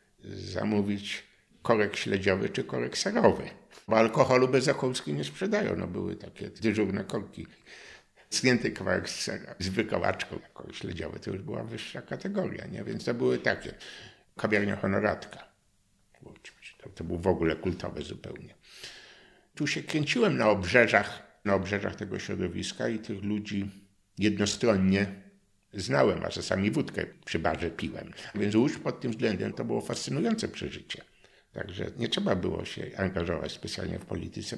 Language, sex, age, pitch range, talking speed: Polish, male, 50-69, 95-120 Hz, 135 wpm